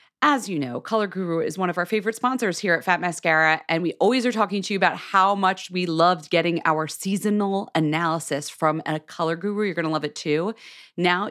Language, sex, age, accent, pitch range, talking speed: English, female, 30-49, American, 150-195 Hz, 225 wpm